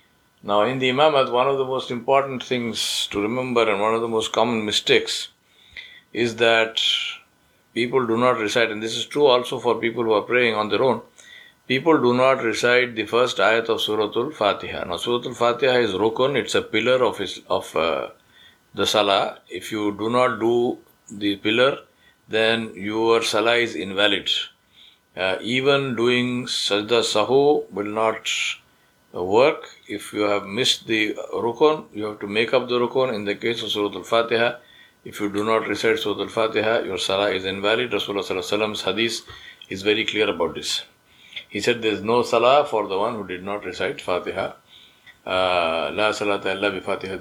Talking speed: 165 wpm